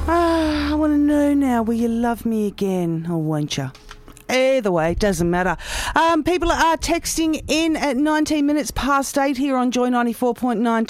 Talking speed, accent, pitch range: 180 wpm, Australian, 205-310 Hz